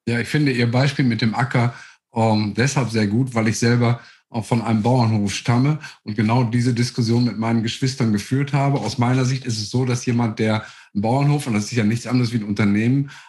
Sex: male